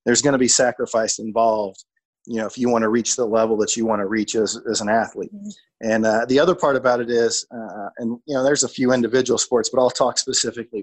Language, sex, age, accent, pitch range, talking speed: English, male, 40-59, American, 115-135 Hz, 250 wpm